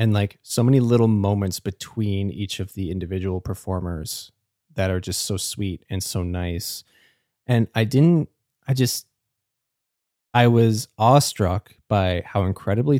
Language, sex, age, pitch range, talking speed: English, male, 20-39, 95-115 Hz, 145 wpm